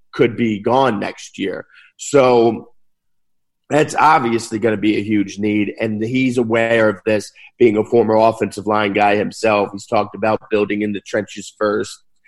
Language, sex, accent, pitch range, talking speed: English, male, American, 105-130 Hz, 165 wpm